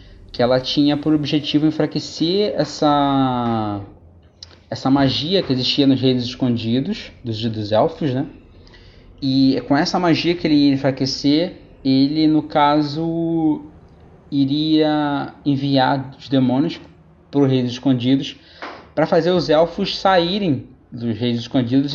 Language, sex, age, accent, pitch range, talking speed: Portuguese, male, 20-39, Brazilian, 130-165 Hz, 120 wpm